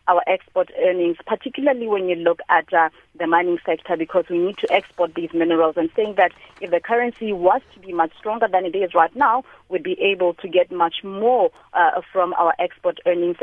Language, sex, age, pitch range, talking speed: English, female, 30-49, 175-225 Hz, 210 wpm